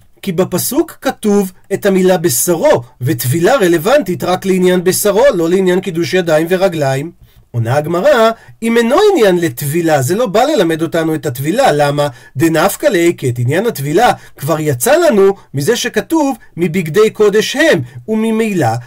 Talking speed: 130 wpm